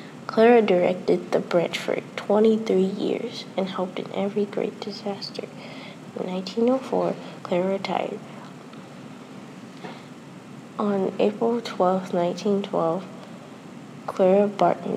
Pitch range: 185-215 Hz